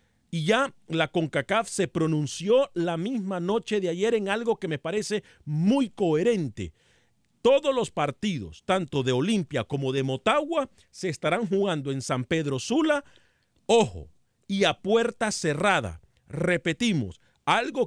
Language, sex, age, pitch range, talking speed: Spanish, male, 40-59, 145-200 Hz, 140 wpm